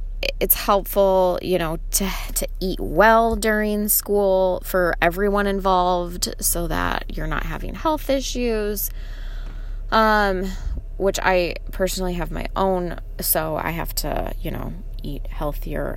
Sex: female